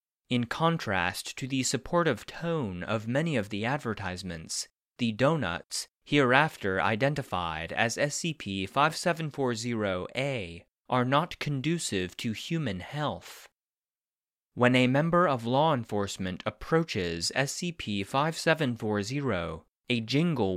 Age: 30-49